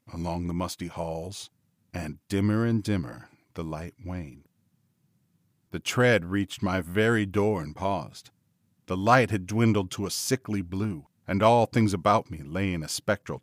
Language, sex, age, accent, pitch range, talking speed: English, male, 40-59, American, 95-125 Hz, 160 wpm